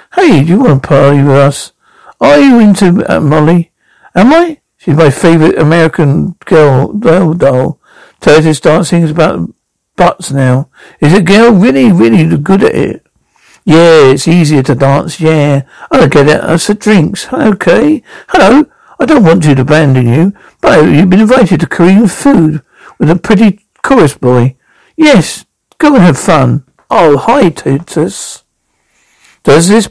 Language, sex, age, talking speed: English, male, 60-79, 160 wpm